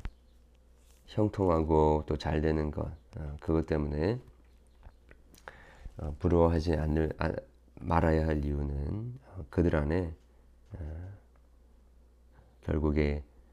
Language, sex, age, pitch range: Korean, male, 40-59, 65-85 Hz